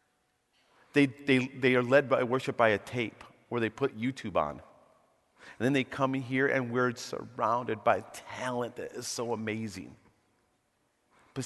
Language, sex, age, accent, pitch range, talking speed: English, male, 40-59, American, 105-135 Hz, 160 wpm